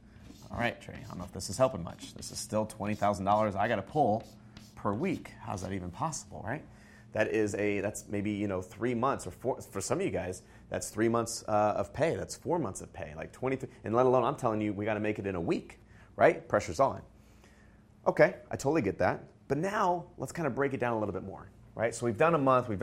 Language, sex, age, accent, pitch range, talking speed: English, male, 30-49, American, 105-120 Hz, 255 wpm